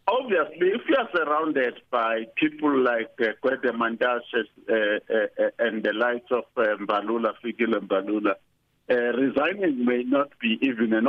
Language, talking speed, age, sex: English, 145 wpm, 50-69, male